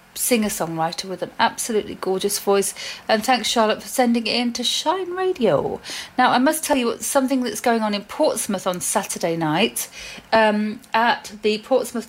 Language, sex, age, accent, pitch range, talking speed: English, female, 40-59, British, 200-255 Hz, 170 wpm